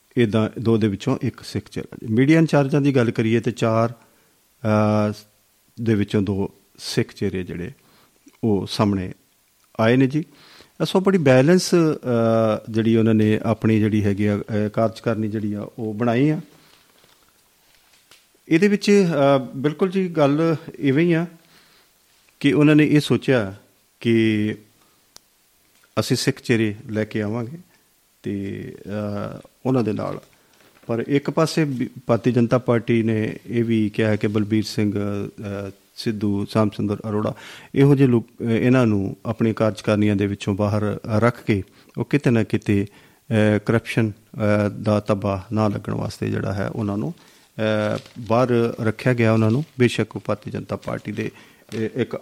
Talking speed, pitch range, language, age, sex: 135 wpm, 105-130 Hz, Punjabi, 50-69, male